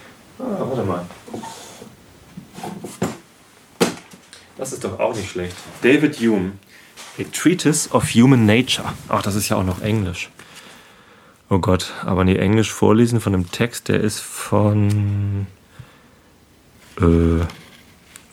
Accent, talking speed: German, 120 wpm